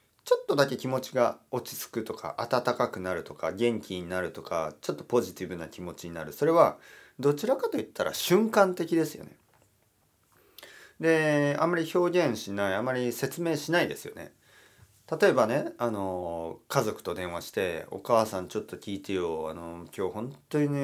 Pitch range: 95-140 Hz